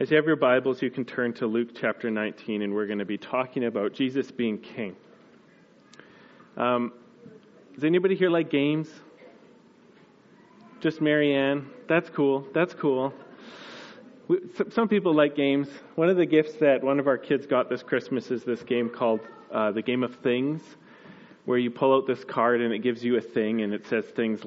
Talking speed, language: 185 wpm, English